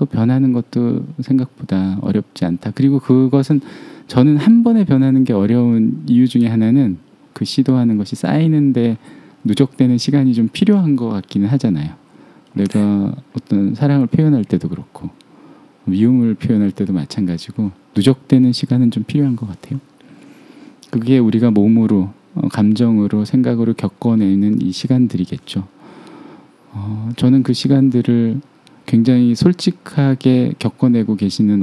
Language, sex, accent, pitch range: Korean, male, native, 100-140 Hz